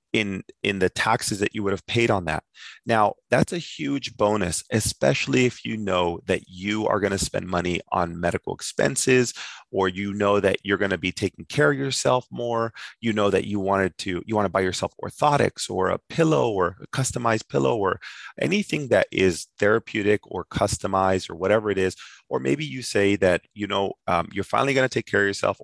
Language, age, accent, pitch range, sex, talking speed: English, 30-49, American, 95-125 Hz, male, 210 wpm